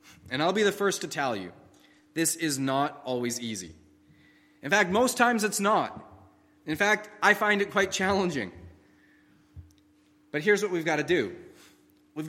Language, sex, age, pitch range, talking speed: English, male, 30-49, 120-180 Hz, 165 wpm